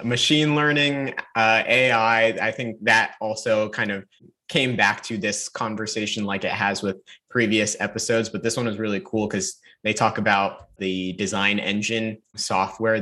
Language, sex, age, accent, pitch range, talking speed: English, male, 20-39, American, 100-115 Hz, 160 wpm